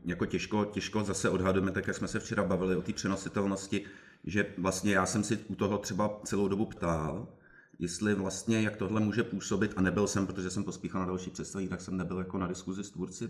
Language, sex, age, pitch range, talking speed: Czech, male, 30-49, 90-105 Hz, 215 wpm